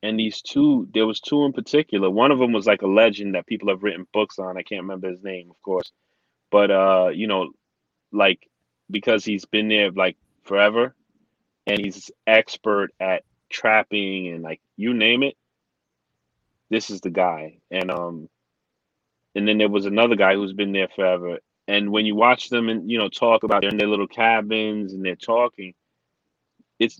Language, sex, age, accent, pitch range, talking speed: English, male, 30-49, American, 95-120 Hz, 185 wpm